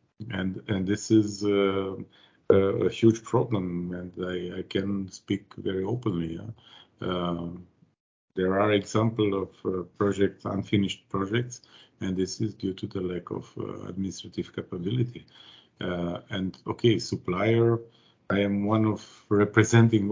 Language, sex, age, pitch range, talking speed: German, male, 50-69, 90-110 Hz, 135 wpm